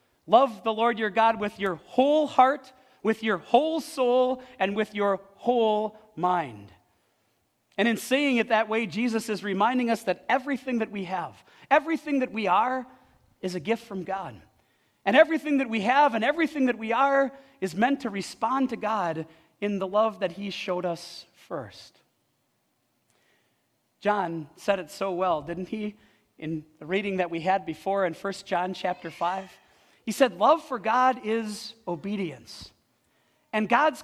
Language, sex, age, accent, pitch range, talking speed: English, male, 40-59, American, 175-245 Hz, 165 wpm